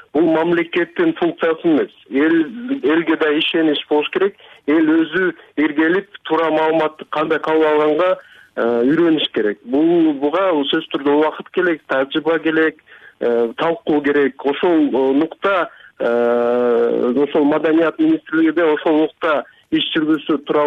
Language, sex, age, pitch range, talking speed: Russian, male, 50-69, 150-175 Hz, 70 wpm